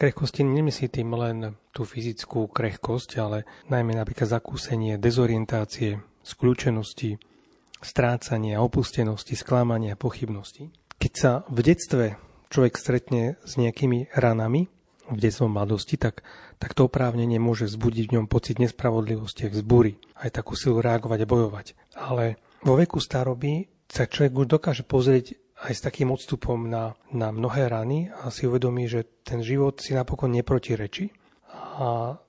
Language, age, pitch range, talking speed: Slovak, 30-49, 115-135 Hz, 140 wpm